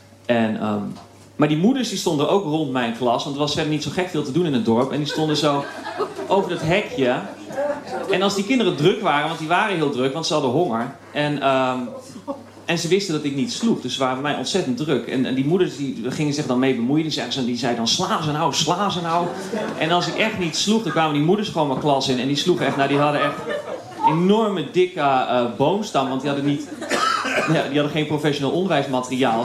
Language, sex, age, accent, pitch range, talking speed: Dutch, male, 30-49, Dutch, 130-175 Hz, 240 wpm